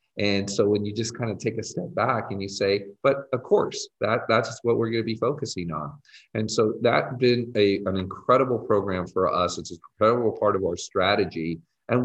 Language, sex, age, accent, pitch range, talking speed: English, male, 40-59, American, 90-110 Hz, 220 wpm